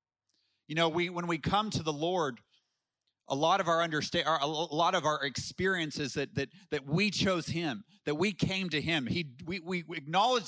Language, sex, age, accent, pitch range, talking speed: English, male, 30-49, American, 115-165 Hz, 195 wpm